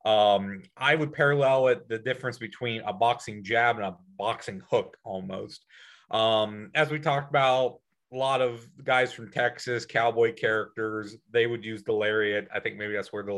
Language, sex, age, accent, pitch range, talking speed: English, male, 30-49, American, 105-130 Hz, 180 wpm